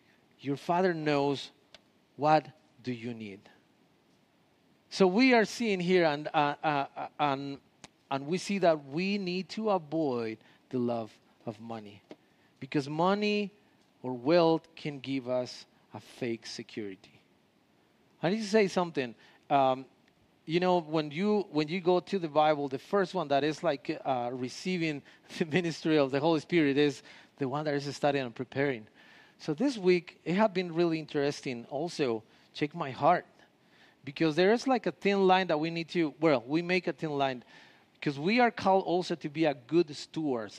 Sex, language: male, English